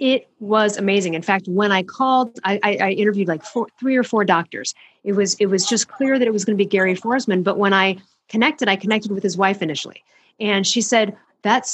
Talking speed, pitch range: 225 wpm, 195-250 Hz